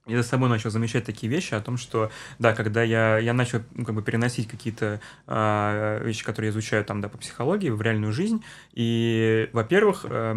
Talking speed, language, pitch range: 205 wpm, Russian, 110-125 Hz